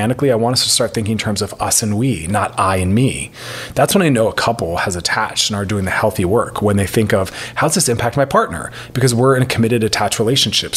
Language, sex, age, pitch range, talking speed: English, male, 30-49, 100-130 Hz, 260 wpm